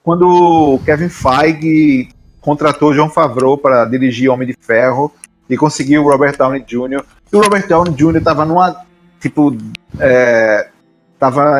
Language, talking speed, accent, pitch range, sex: Portuguese, 150 wpm, Brazilian, 125-160 Hz, male